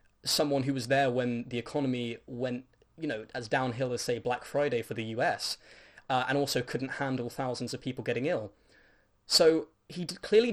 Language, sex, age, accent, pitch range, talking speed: English, male, 10-29, British, 115-140 Hz, 180 wpm